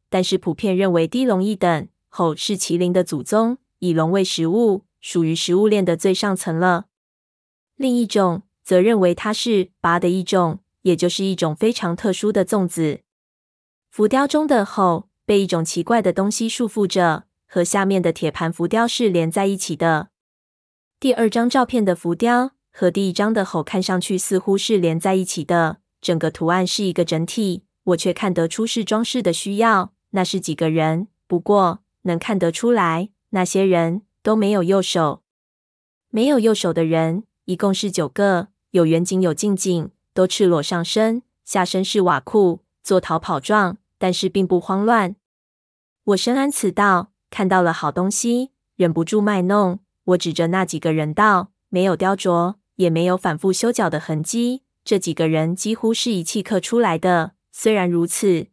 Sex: female